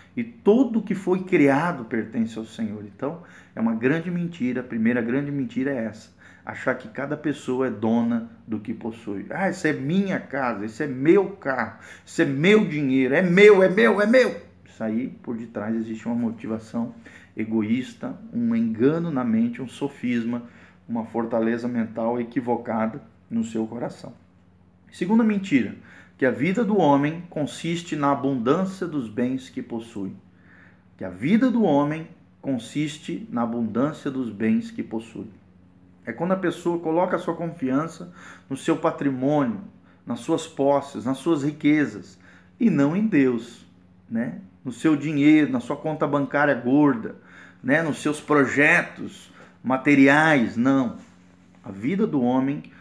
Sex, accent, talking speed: male, Brazilian, 155 wpm